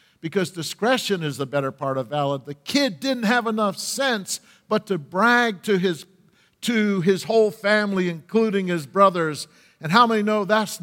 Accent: American